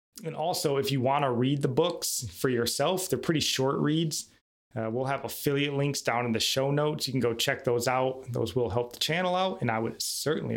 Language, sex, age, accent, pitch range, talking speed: English, male, 20-39, American, 115-140 Hz, 235 wpm